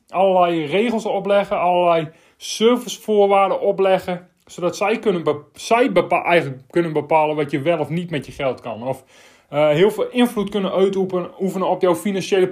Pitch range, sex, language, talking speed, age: 160-205 Hz, male, Dutch, 165 wpm, 30-49